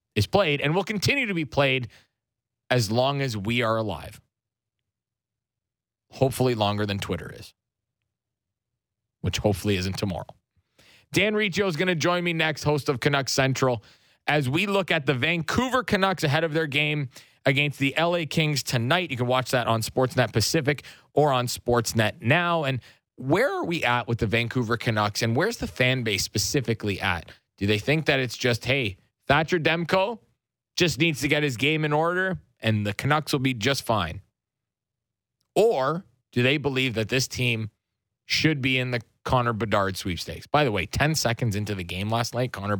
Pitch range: 110-150 Hz